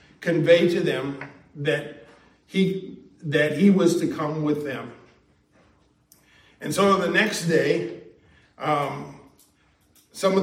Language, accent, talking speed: English, American, 115 wpm